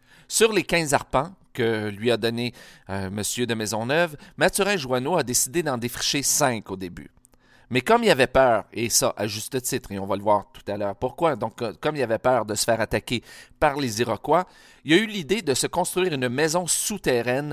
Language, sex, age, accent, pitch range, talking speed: French, male, 40-59, Canadian, 110-140 Hz, 220 wpm